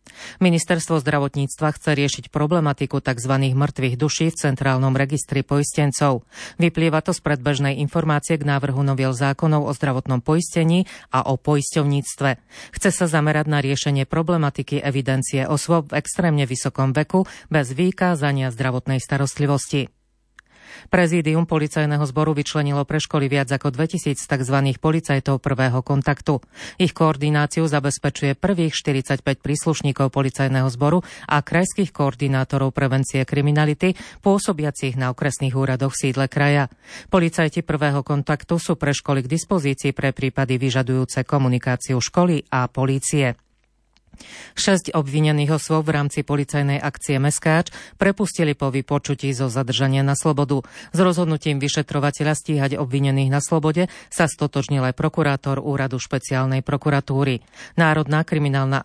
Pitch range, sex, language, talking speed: 135-155 Hz, female, Slovak, 125 wpm